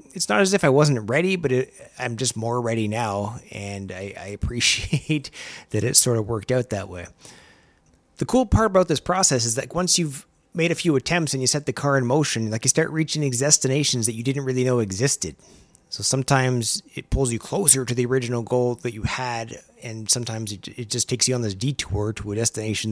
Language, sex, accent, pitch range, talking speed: English, male, American, 110-135 Hz, 220 wpm